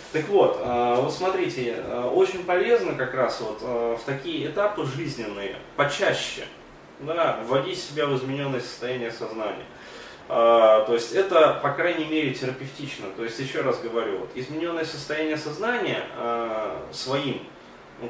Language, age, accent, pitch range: Russian, 20-39, native, 120-150 Hz